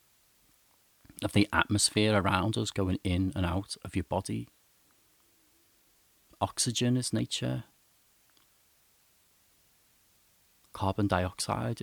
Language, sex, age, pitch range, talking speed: English, male, 40-59, 95-110 Hz, 85 wpm